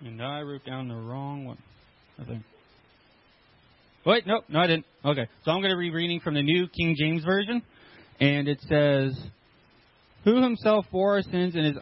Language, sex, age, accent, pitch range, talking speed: English, male, 20-39, American, 130-160 Hz, 190 wpm